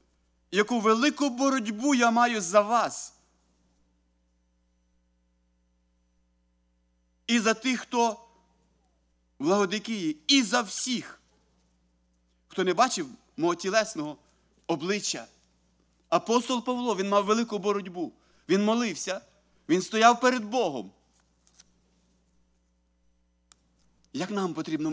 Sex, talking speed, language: male, 85 wpm, English